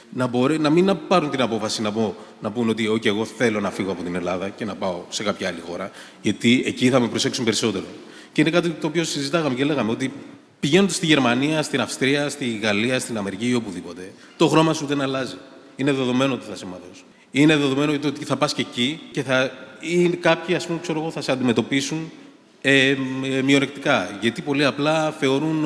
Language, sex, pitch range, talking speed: Greek, male, 125-160 Hz, 210 wpm